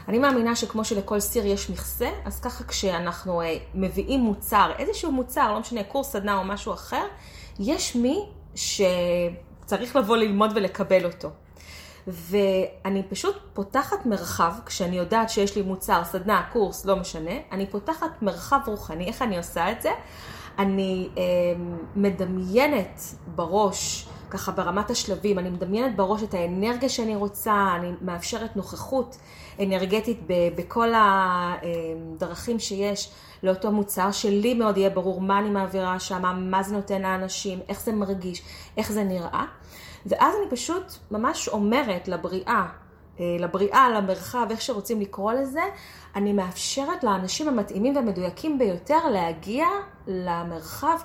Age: 30-49